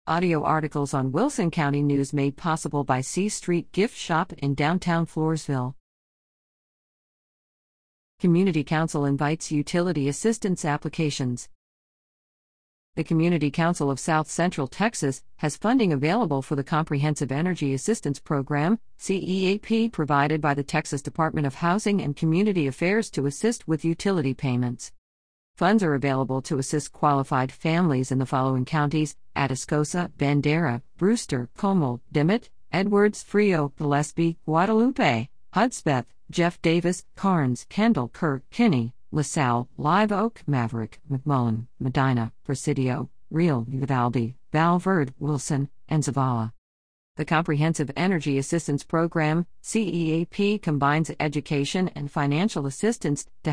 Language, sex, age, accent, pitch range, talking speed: English, female, 50-69, American, 140-175 Hz, 120 wpm